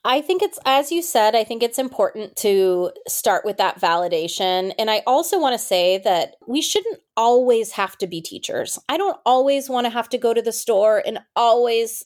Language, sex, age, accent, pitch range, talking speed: English, female, 30-49, American, 190-265 Hz, 210 wpm